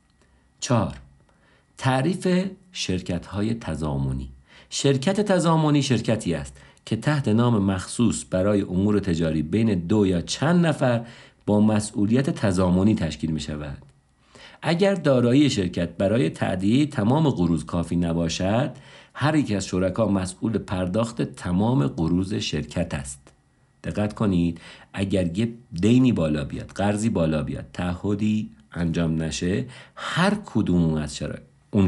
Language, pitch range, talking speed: Persian, 85-125 Hz, 120 wpm